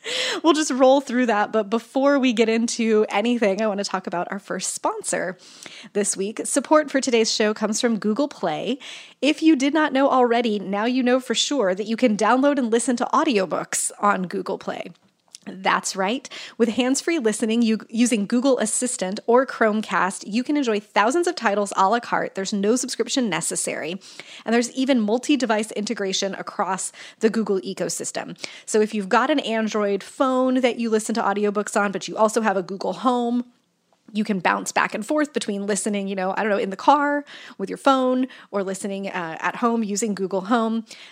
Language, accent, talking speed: English, American, 190 wpm